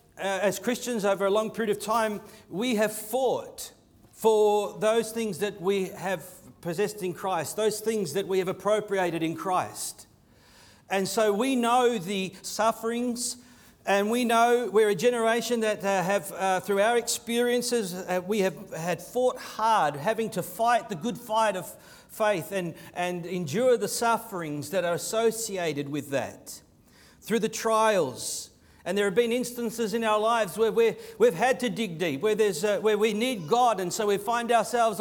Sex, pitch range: male, 195-235 Hz